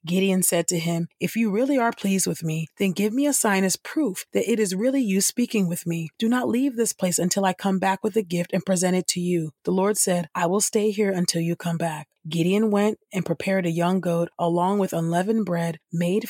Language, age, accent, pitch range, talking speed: English, 30-49, American, 170-210 Hz, 245 wpm